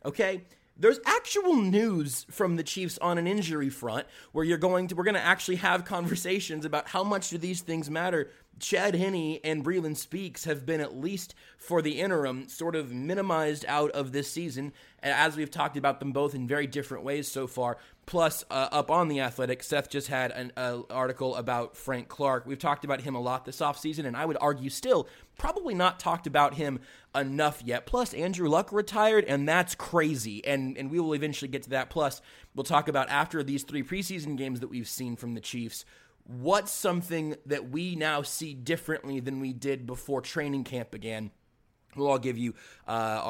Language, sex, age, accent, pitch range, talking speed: English, male, 30-49, American, 130-170 Hz, 200 wpm